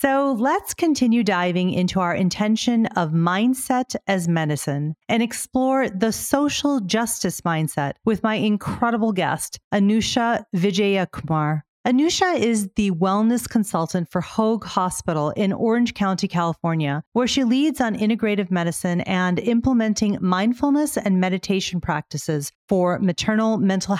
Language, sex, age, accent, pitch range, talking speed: English, female, 40-59, American, 175-225 Hz, 125 wpm